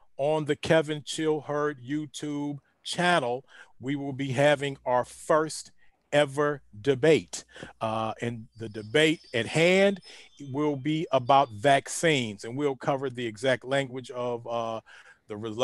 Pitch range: 125-155 Hz